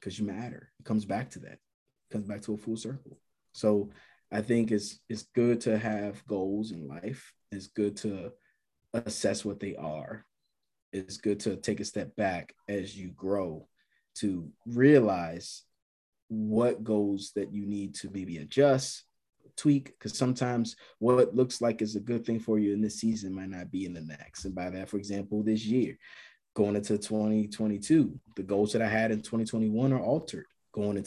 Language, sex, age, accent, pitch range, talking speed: English, male, 20-39, American, 100-110 Hz, 180 wpm